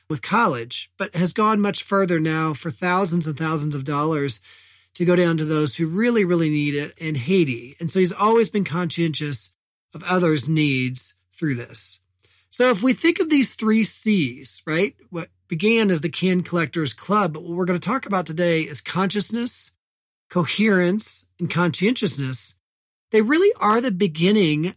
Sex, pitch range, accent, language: male, 150-195 Hz, American, English